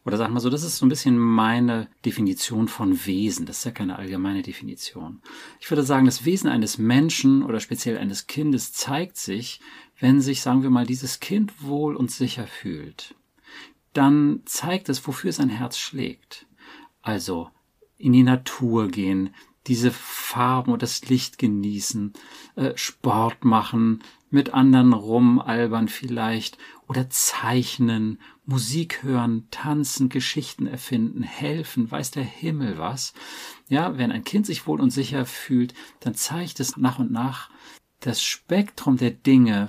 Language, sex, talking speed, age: German, male, 150 wpm, 40-59